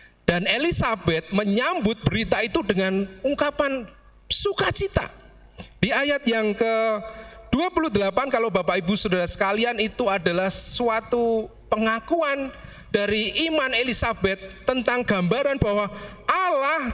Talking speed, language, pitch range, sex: 100 wpm, Indonesian, 150-245 Hz, male